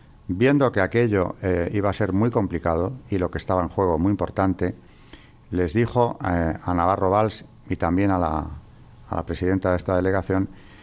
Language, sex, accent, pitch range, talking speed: Spanish, male, Spanish, 90-115 Hz, 185 wpm